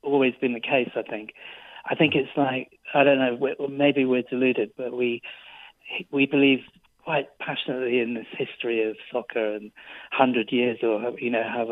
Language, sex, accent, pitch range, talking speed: English, male, British, 120-140 Hz, 180 wpm